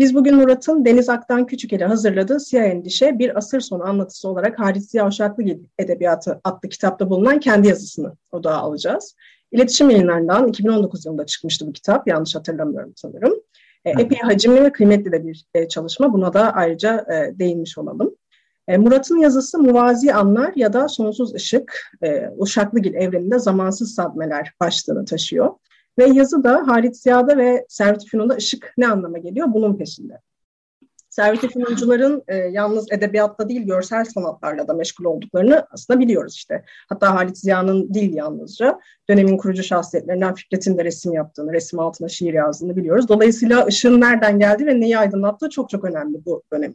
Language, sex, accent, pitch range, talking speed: Turkish, female, native, 185-250 Hz, 150 wpm